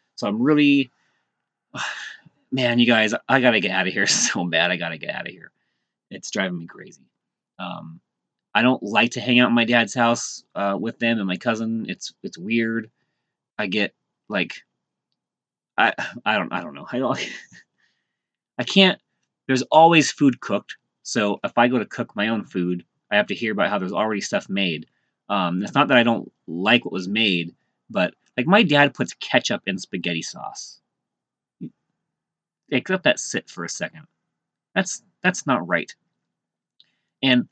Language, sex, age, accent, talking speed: English, male, 30-49, American, 180 wpm